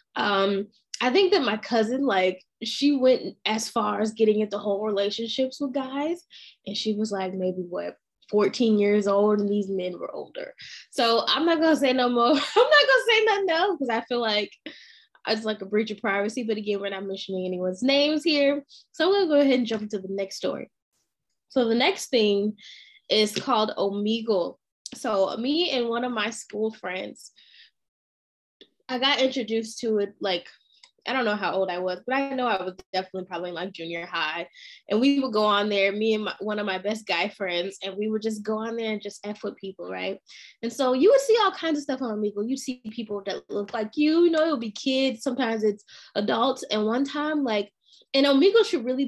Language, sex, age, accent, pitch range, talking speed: English, female, 10-29, American, 205-275 Hz, 215 wpm